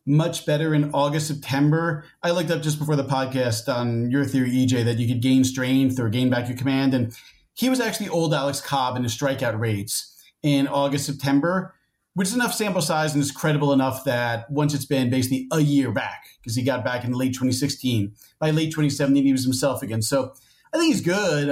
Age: 30-49